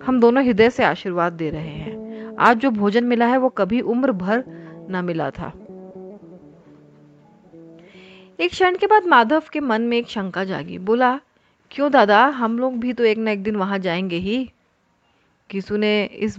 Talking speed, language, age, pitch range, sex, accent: 175 wpm, Hindi, 30-49, 195-255 Hz, female, native